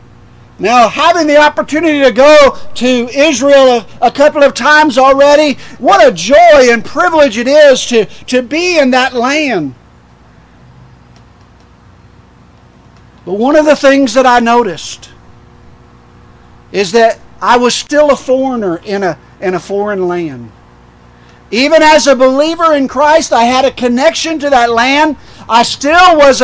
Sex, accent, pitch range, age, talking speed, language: male, American, 210-310 Hz, 50-69, 140 wpm, English